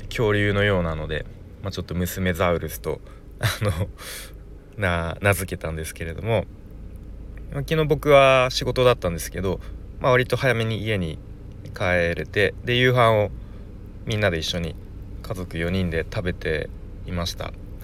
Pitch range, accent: 85-105 Hz, native